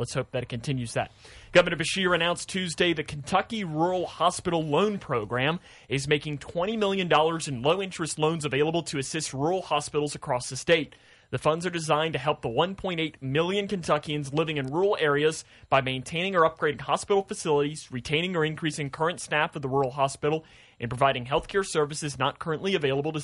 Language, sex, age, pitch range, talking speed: English, male, 30-49, 135-170 Hz, 180 wpm